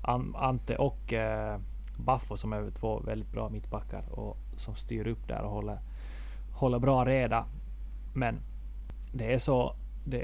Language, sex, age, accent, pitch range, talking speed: Swedish, male, 20-39, native, 105-120 Hz, 140 wpm